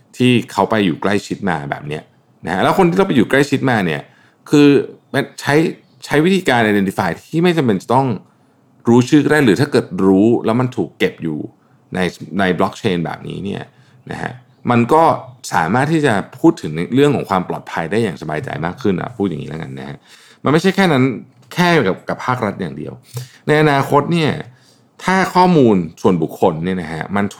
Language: Thai